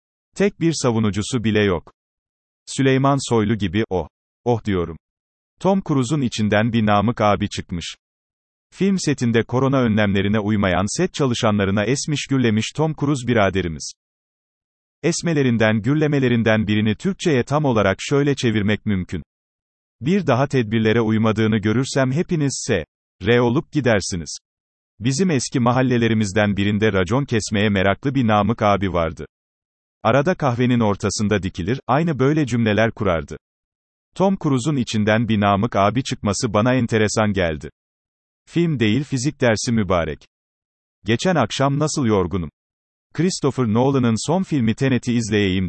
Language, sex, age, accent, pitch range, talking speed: Turkish, male, 40-59, native, 100-135 Hz, 120 wpm